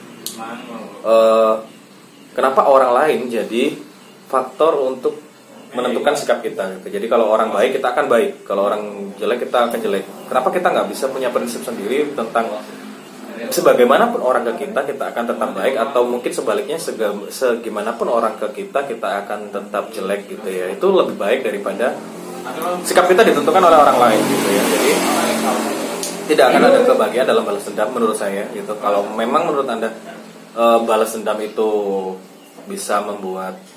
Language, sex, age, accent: Indonesian, male, 20-39, native